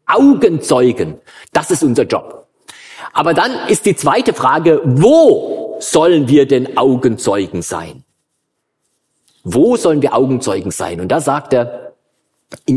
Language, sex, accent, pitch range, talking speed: German, male, German, 145-245 Hz, 125 wpm